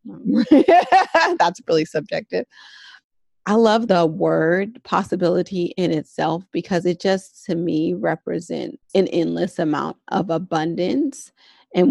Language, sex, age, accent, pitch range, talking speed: English, female, 30-49, American, 165-195 Hz, 110 wpm